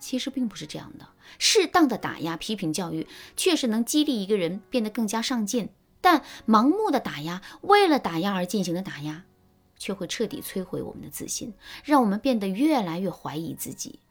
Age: 30-49